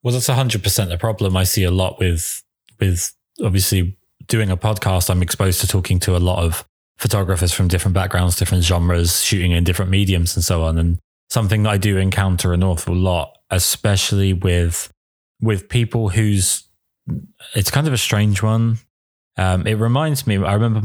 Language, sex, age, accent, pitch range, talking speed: English, male, 20-39, British, 90-110 Hz, 180 wpm